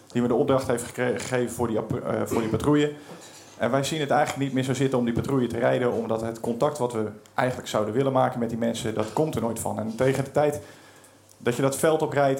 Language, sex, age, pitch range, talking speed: Dutch, male, 40-59, 115-135 Hz, 255 wpm